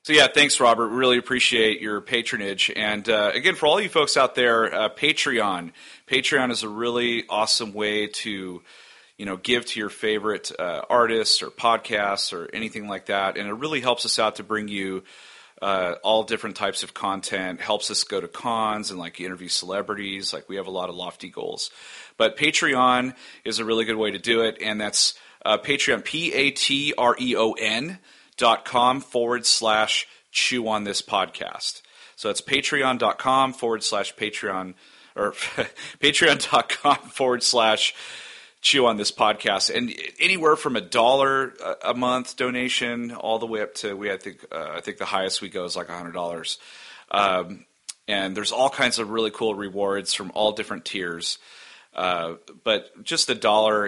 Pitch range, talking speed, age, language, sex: 100-120 Hz, 175 wpm, 30-49, English, male